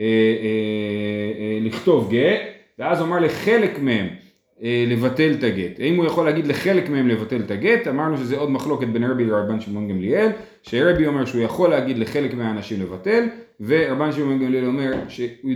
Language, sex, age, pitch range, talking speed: Hebrew, male, 30-49, 120-185 Hz, 175 wpm